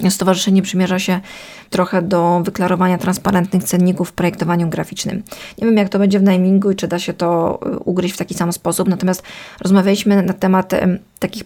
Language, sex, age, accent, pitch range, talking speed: Polish, female, 20-39, native, 180-195 Hz, 175 wpm